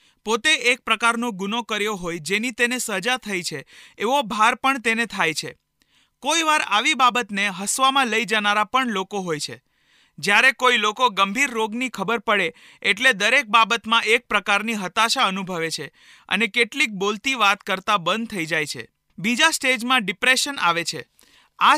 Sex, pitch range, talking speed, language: male, 195-250 Hz, 110 wpm, Hindi